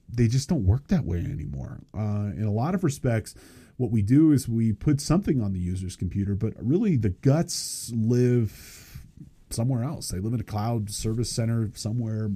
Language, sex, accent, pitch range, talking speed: English, male, American, 105-135 Hz, 190 wpm